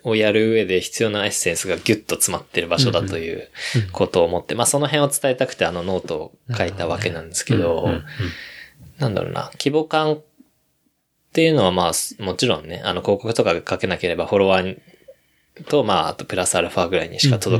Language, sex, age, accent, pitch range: Japanese, male, 20-39, native, 90-130 Hz